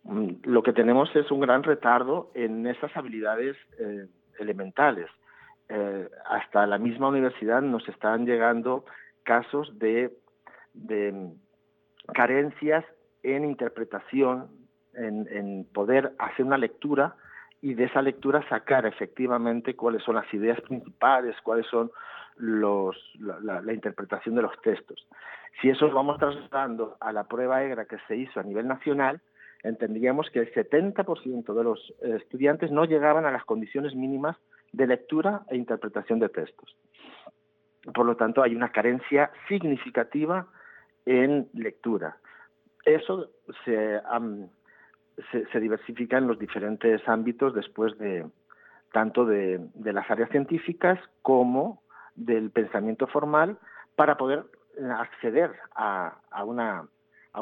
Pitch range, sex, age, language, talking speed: 110-145 Hz, male, 50-69, Spanish, 130 wpm